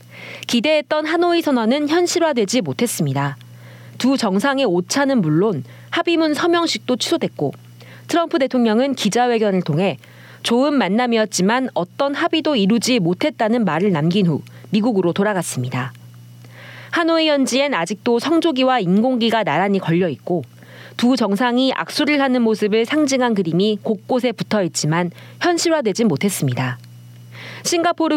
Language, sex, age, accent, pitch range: Korean, female, 40-59, native, 160-270 Hz